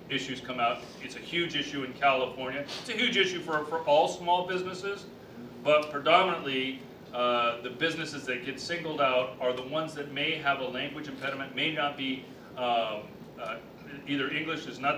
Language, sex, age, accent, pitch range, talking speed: English, male, 40-59, American, 125-145 Hz, 180 wpm